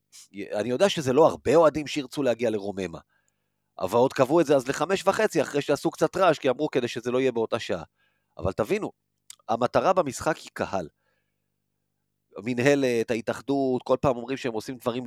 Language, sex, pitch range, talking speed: Hebrew, male, 110-150 Hz, 170 wpm